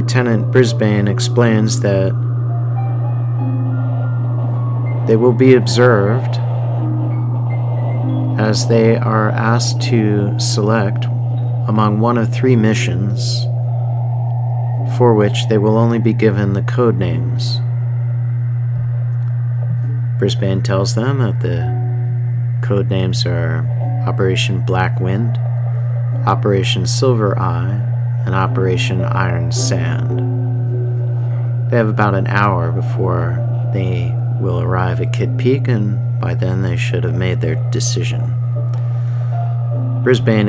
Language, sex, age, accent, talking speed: English, male, 40-59, American, 100 wpm